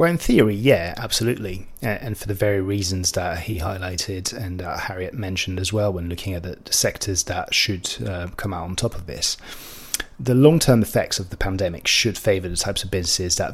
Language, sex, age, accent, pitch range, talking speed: English, male, 30-49, British, 95-110 Hz, 205 wpm